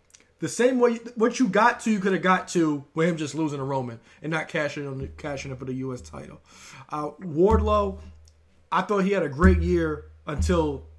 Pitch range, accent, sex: 135-180 Hz, American, male